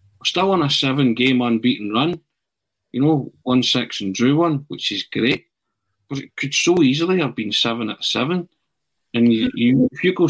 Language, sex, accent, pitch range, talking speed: English, male, British, 115-145 Hz, 190 wpm